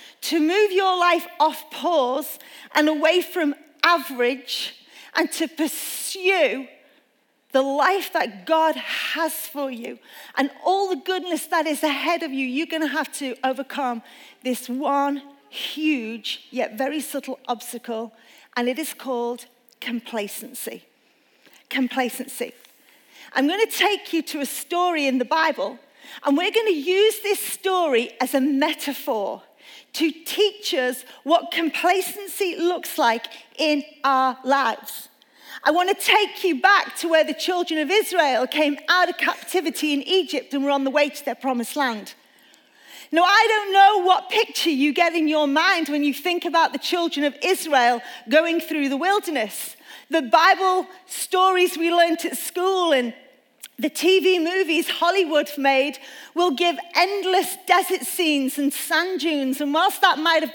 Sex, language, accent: female, English, British